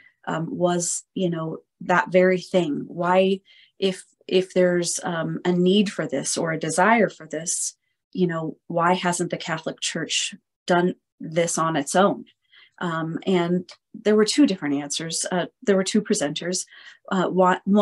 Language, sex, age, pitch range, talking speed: English, female, 30-49, 165-195 Hz, 155 wpm